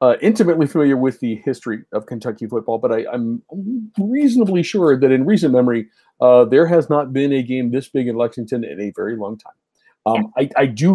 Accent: American